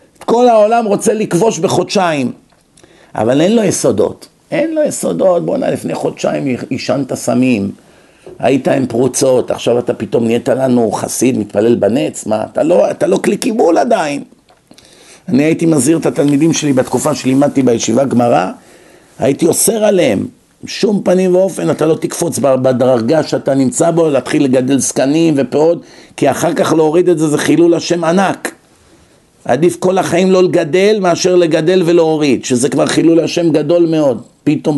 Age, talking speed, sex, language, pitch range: 50-69, 150 wpm, male, Hebrew, 135-180 Hz